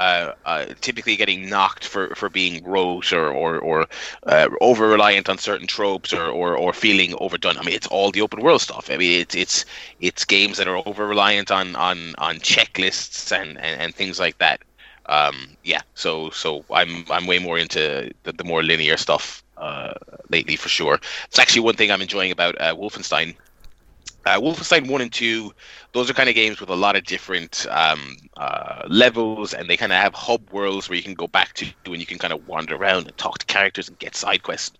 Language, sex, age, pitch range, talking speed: English, male, 20-39, 90-110 Hz, 215 wpm